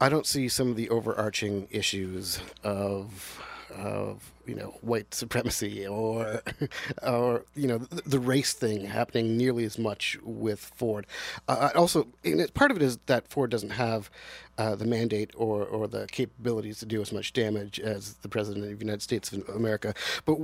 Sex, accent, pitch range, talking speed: male, American, 110-150 Hz, 175 wpm